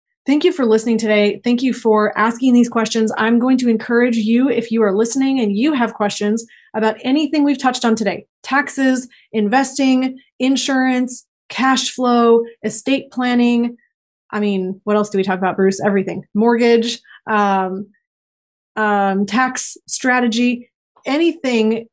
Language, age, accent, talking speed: English, 30-49, American, 145 wpm